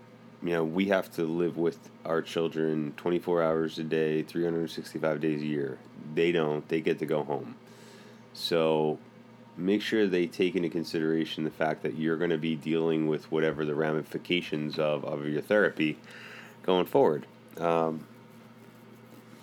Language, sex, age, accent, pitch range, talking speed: English, male, 30-49, American, 80-95 Hz, 155 wpm